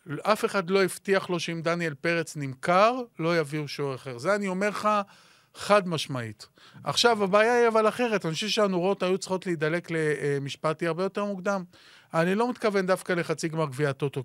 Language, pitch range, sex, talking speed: Hebrew, 150-200 Hz, male, 175 wpm